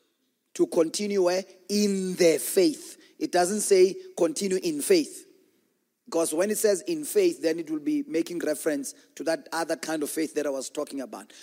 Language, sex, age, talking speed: English, male, 30-49, 180 wpm